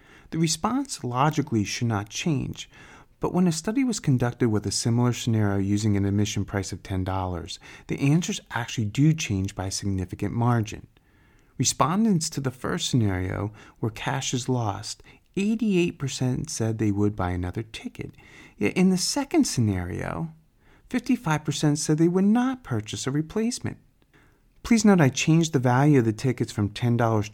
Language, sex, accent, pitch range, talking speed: English, male, American, 100-155 Hz, 155 wpm